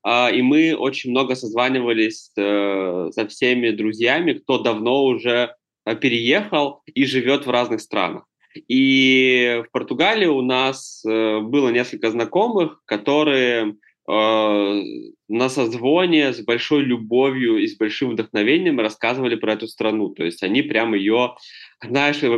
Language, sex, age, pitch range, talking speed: Russian, male, 20-39, 110-135 Hz, 120 wpm